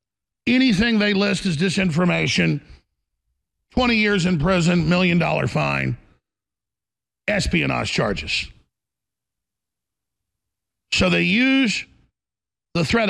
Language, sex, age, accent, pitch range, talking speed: English, male, 50-69, American, 150-190 Hz, 80 wpm